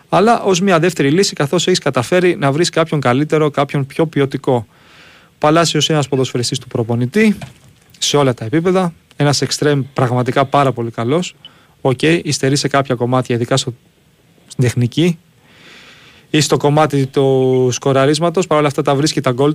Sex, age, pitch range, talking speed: male, 30-49, 130-170 Hz, 155 wpm